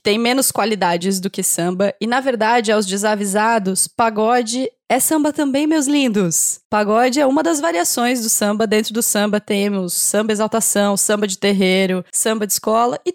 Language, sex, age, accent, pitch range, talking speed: Portuguese, female, 20-39, Brazilian, 205-250 Hz, 170 wpm